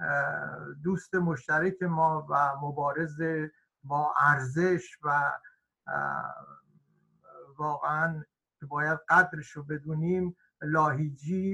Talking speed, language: 75 wpm, Persian